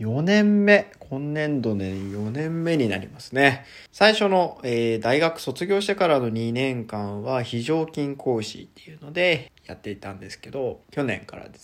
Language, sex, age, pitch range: Japanese, male, 20-39, 105-135 Hz